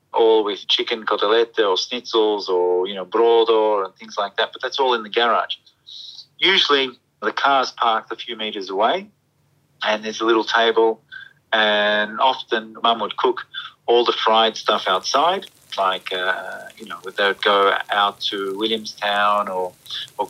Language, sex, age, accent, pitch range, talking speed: English, male, 30-49, Australian, 105-130 Hz, 160 wpm